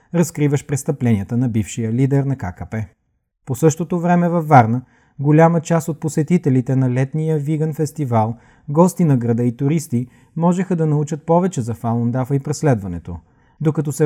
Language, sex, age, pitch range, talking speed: Bulgarian, male, 30-49, 125-155 Hz, 150 wpm